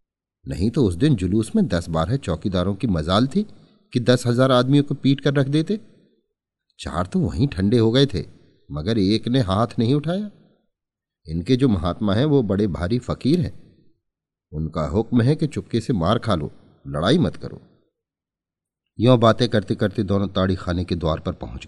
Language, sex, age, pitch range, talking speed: Hindi, male, 40-59, 90-125 Hz, 185 wpm